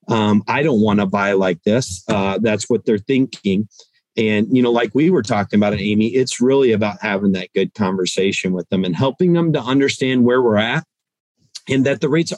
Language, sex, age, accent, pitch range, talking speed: English, male, 40-59, American, 105-125 Hz, 210 wpm